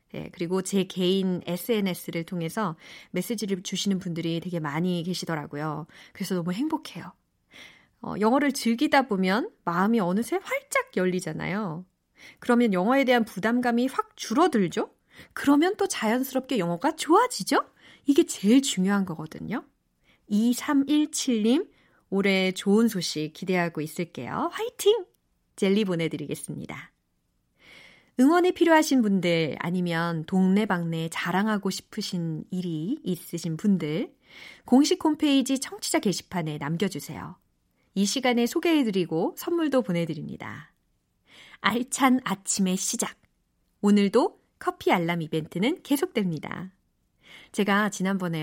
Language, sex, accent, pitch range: Korean, female, native, 175-270 Hz